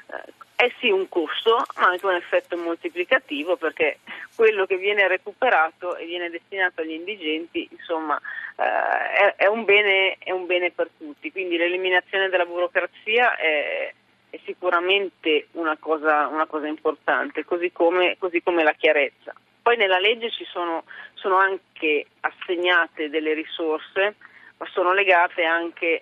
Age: 30-49